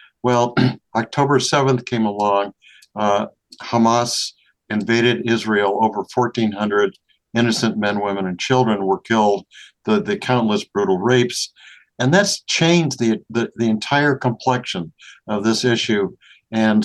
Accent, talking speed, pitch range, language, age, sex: American, 125 wpm, 105-125 Hz, English, 60-79, male